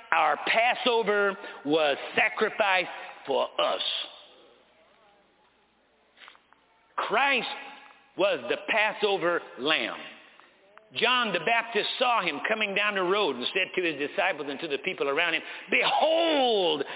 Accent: American